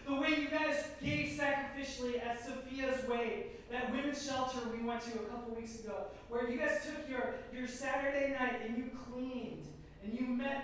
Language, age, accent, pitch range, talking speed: English, 20-39, American, 245-320 Hz, 185 wpm